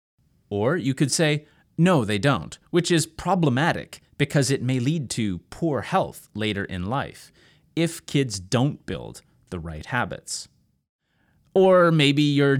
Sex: male